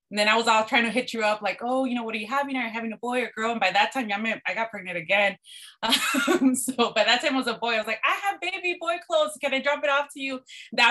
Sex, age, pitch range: female, 20-39, 185-235 Hz